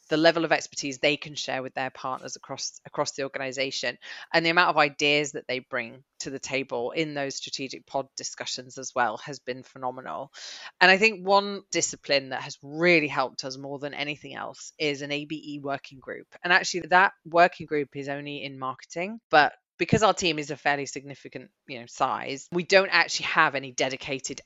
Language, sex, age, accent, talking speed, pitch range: English, female, 20-39, British, 195 wpm, 140-170 Hz